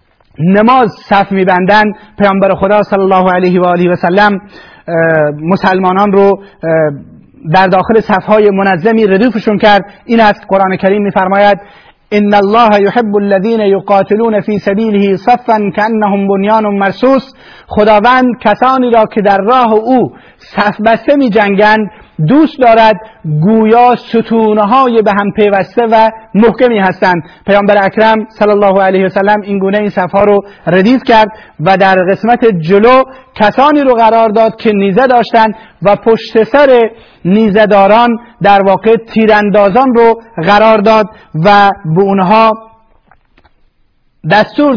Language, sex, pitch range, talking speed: Persian, male, 195-225 Hz, 125 wpm